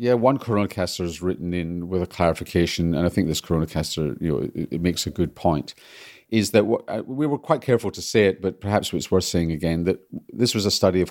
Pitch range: 85-100 Hz